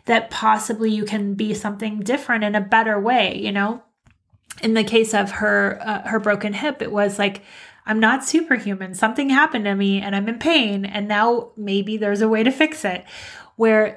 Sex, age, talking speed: female, 30-49, 200 wpm